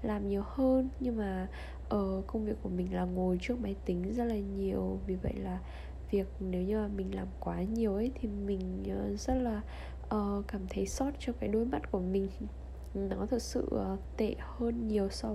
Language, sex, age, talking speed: Vietnamese, female, 10-29, 205 wpm